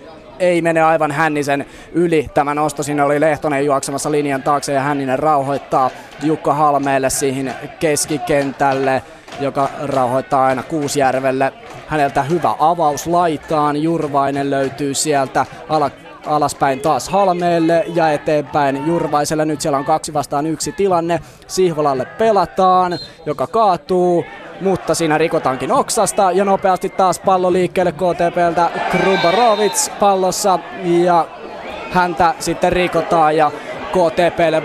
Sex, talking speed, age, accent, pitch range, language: male, 115 wpm, 20-39, native, 140-170 Hz, Finnish